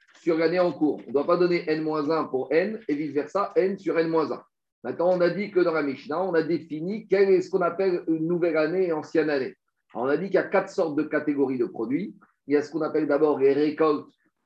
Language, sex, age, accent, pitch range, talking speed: French, male, 50-69, French, 155-200 Hz, 255 wpm